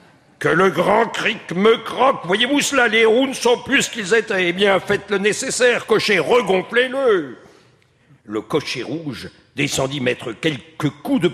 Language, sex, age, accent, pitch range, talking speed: French, male, 60-79, French, 140-215 Hz, 165 wpm